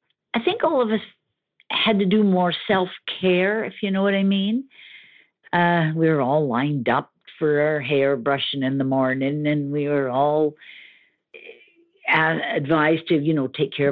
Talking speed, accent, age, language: 170 wpm, American, 60-79, English